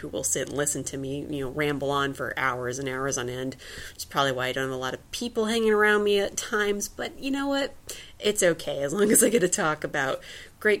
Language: English